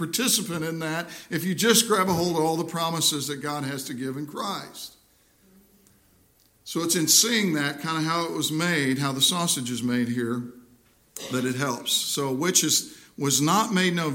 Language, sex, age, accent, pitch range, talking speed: English, male, 50-69, American, 140-195 Hz, 200 wpm